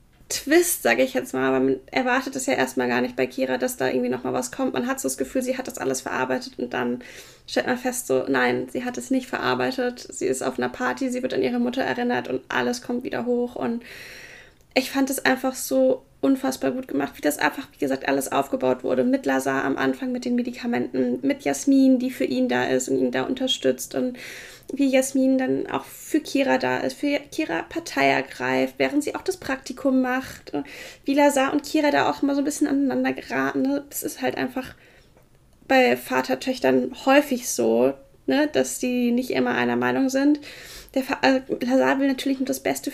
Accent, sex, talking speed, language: German, female, 215 wpm, German